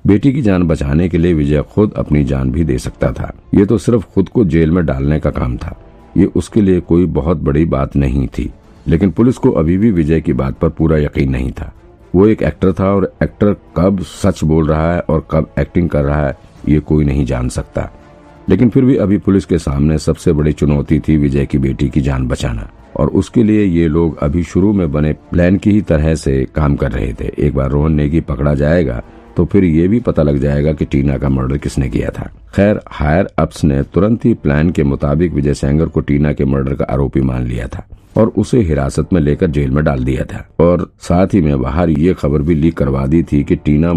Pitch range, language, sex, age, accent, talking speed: 70-90 Hz, Hindi, male, 50-69, native, 175 wpm